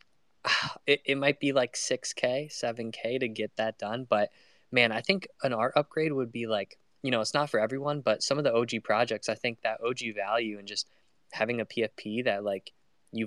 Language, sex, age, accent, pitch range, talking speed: English, male, 10-29, American, 105-125 Hz, 210 wpm